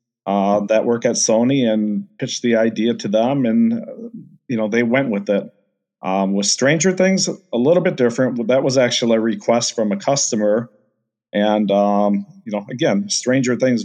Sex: male